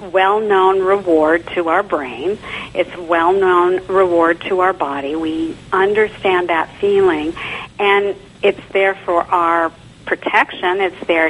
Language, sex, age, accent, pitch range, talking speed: English, female, 50-69, American, 170-210 Hz, 120 wpm